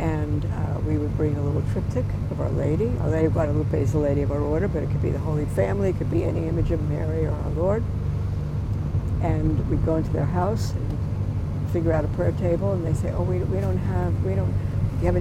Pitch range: 90-110 Hz